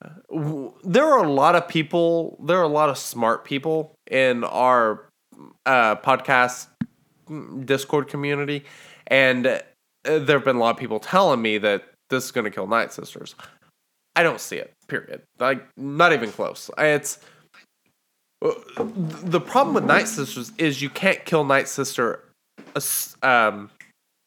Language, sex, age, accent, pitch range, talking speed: English, male, 20-39, American, 130-175 Hz, 145 wpm